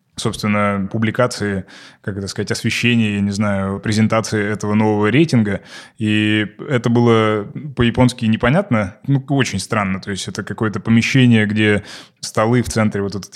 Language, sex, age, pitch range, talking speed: Russian, male, 20-39, 105-120 Hz, 145 wpm